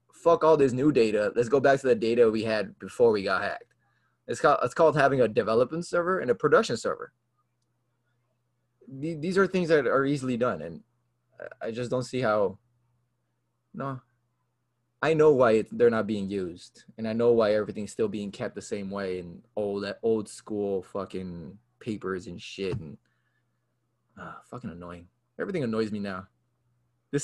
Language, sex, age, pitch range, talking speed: English, male, 20-39, 110-125 Hz, 175 wpm